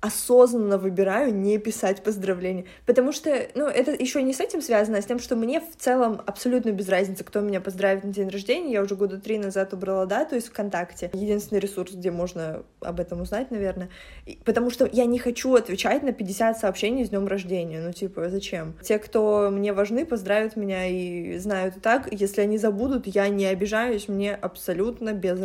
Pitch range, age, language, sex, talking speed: 195-250 Hz, 20-39, Russian, female, 195 wpm